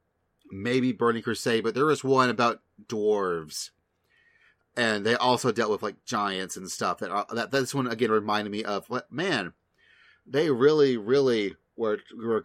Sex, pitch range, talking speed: male, 105-165 Hz, 165 wpm